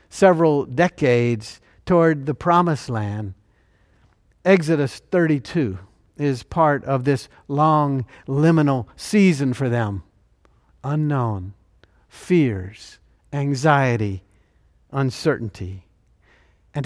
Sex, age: male, 50-69